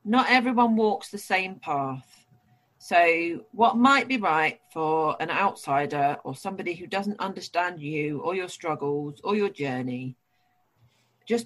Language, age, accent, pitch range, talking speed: English, 40-59, British, 135-190 Hz, 140 wpm